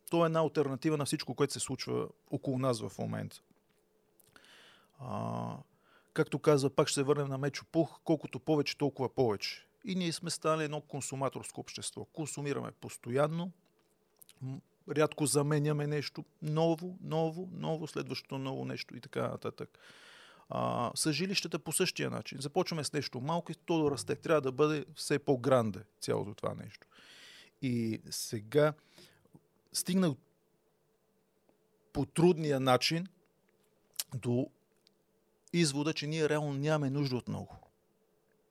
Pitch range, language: 135-160 Hz, Bulgarian